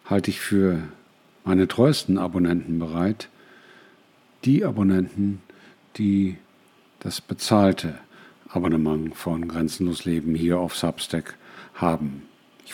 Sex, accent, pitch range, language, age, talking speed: male, German, 85-100 Hz, German, 50-69, 100 wpm